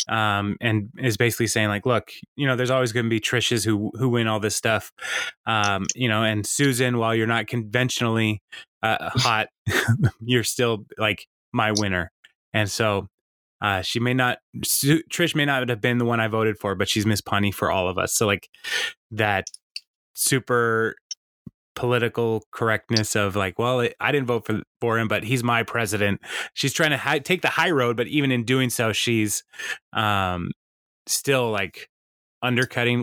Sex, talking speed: male, 175 wpm